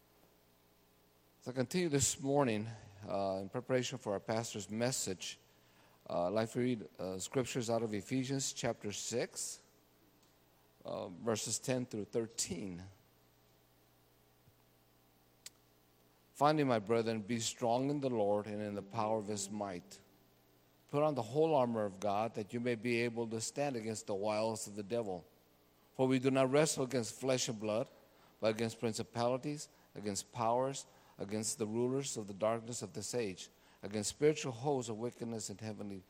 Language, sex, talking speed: English, male, 155 wpm